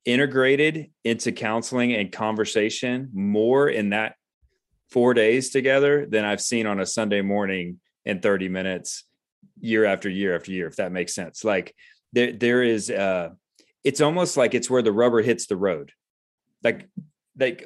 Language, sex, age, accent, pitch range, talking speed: English, male, 30-49, American, 110-135 Hz, 160 wpm